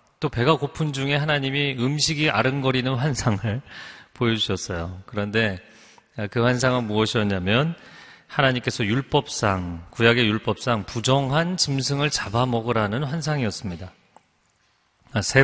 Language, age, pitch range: Korean, 40-59, 105-135 Hz